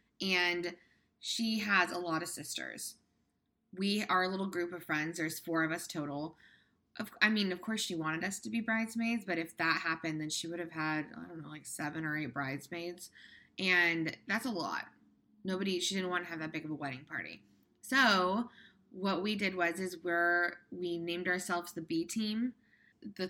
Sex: female